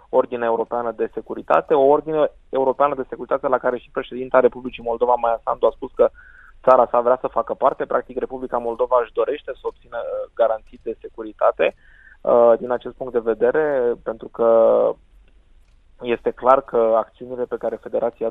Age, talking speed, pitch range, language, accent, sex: 20-39, 165 wpm, 115-130 Hz, Romanian, native, male